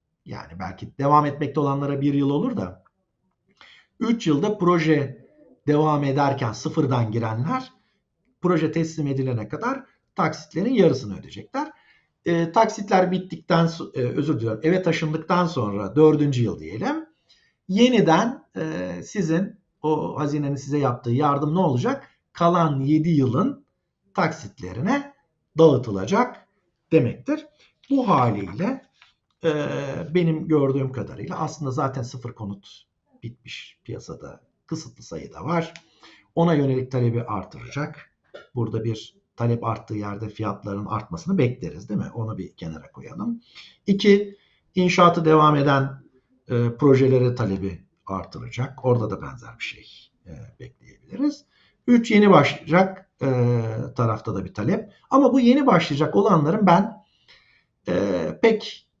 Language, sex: Turkish, male